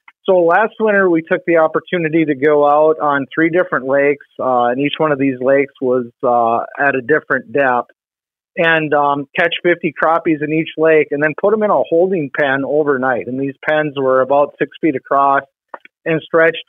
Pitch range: 140-180 Hz